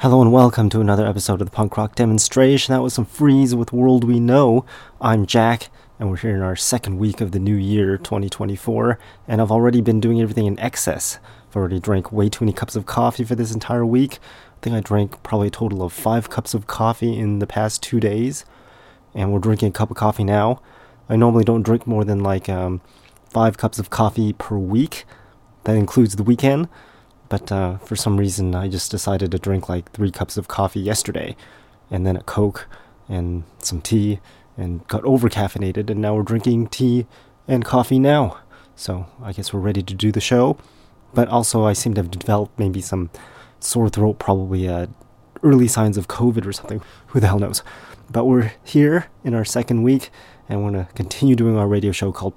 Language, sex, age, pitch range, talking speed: English, male, 30-49, 100-120 Hz, 205 wpm